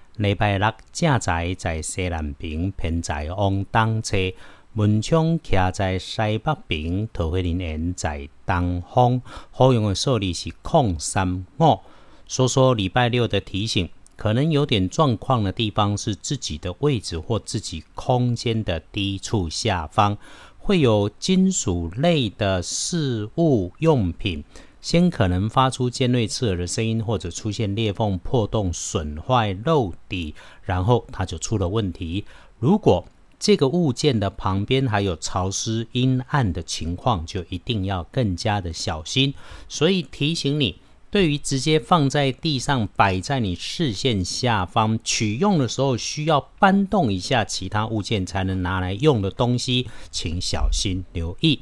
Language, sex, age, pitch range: Chinese, male, 50-69, 95-130 Hz